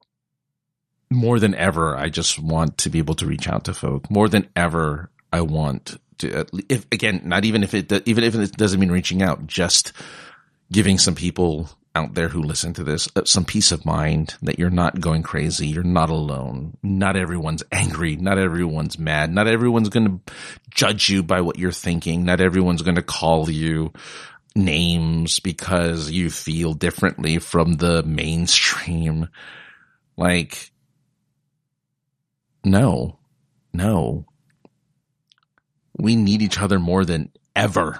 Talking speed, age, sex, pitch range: 155 wpm, 30-49, male, 80-110 Hz